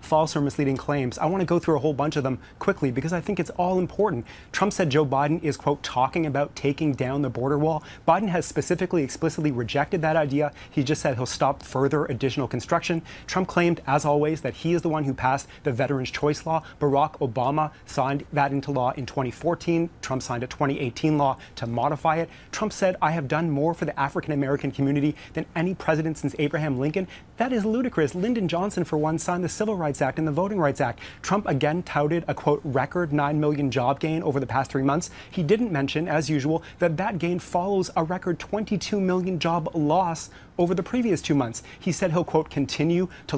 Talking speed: 215 wpm